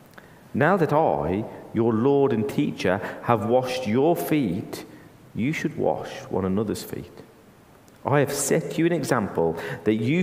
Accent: British